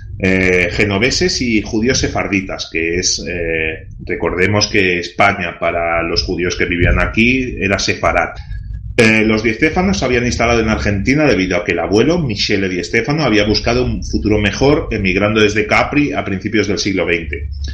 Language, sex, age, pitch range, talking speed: Spanish, male, 30-49, 90-115 Hz, 160 wpm